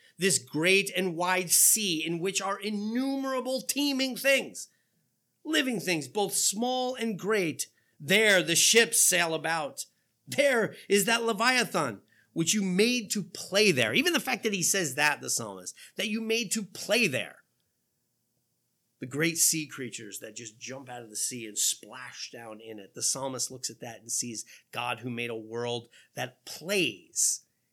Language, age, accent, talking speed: English, 30-49, American, 165 wpm